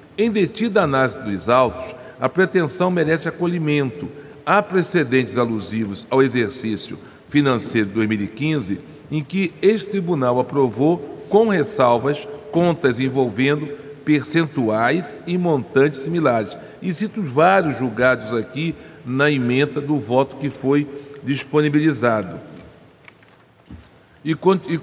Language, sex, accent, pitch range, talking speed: Portuguese, male, Brazilian, 120-160 Hz, 105 wpm